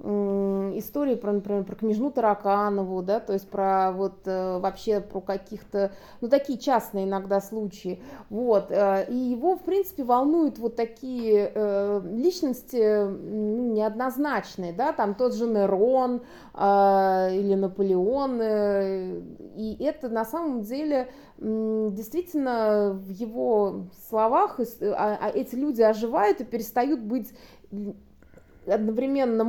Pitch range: 195-255 Hz